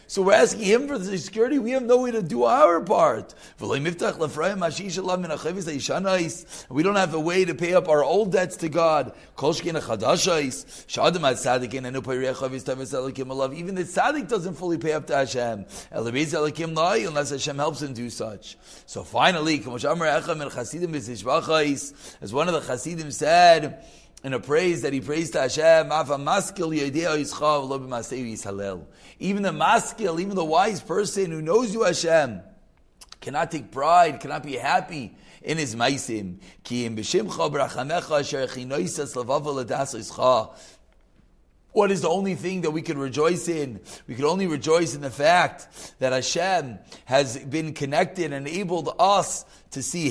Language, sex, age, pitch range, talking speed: English, male, 30-49, 135-180 Hz, 125 wpm